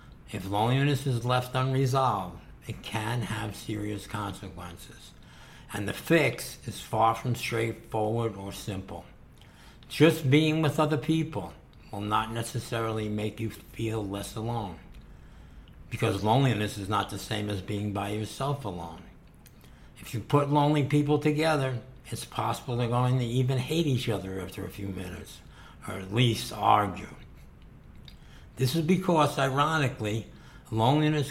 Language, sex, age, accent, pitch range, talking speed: English, male, 60-79, American, 105-130 Hz, 135 wpm